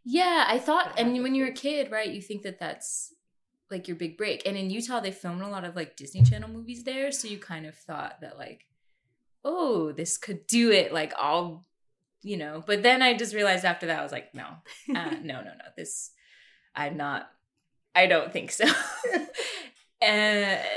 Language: English